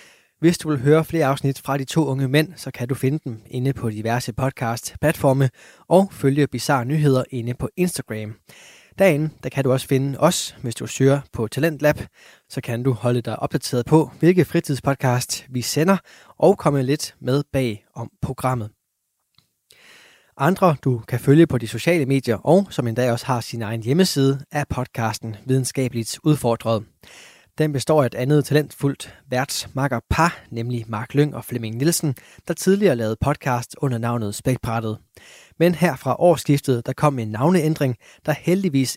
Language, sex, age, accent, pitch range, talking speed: Danish, male, 20-39, native, 120-150 Hz, 165 wpm